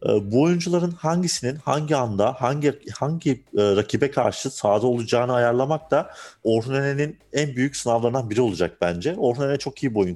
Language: Turkish